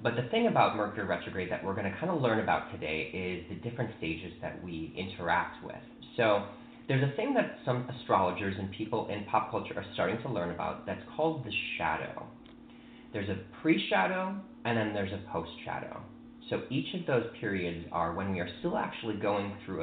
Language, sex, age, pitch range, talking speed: English, male, 30-49, 90-120 Hz, 195 wpm